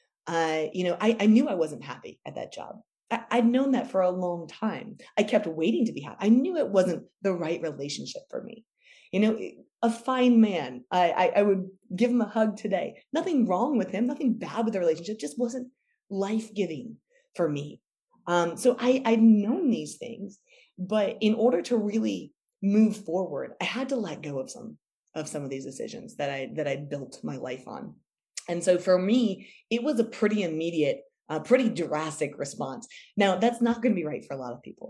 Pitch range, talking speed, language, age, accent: 165-230 Hz, 210 wpm, English, 30-49, American